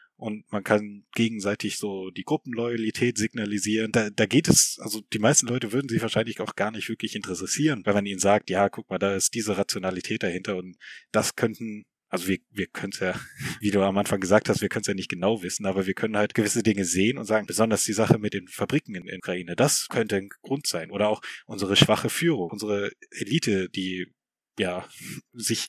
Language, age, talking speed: German, 20-39, 215 wpm